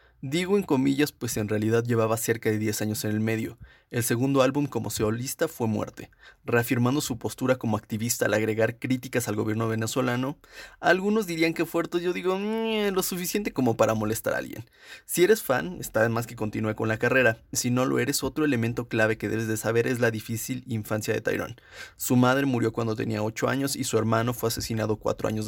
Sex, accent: male, Mexican